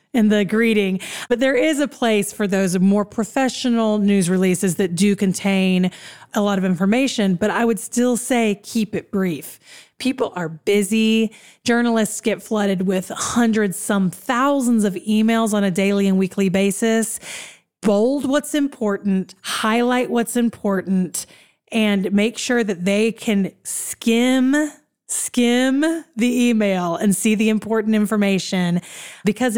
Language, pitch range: English, 190-235 Hz